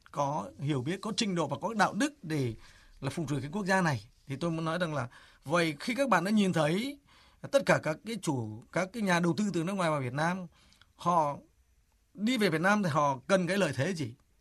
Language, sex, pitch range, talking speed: Vietnamese, male, 155-205 Hz, 245 wpm